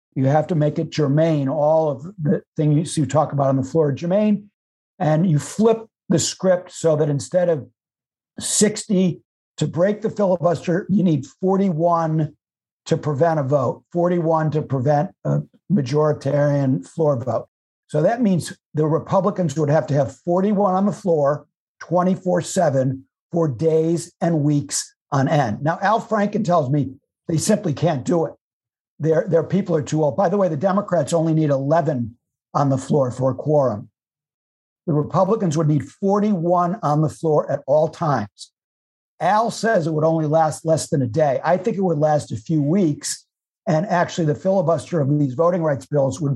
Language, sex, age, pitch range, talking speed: English, male, 60-79, 145-175 Hz, 175 wpm